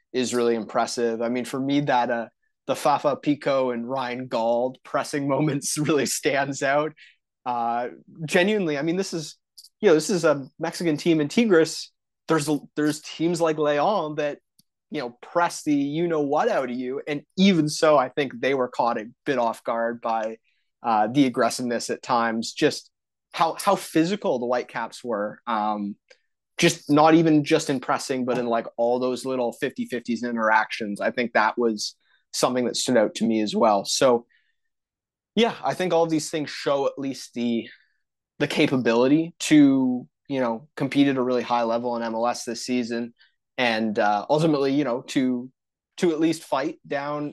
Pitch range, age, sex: 120-160 Hz, 20-39, male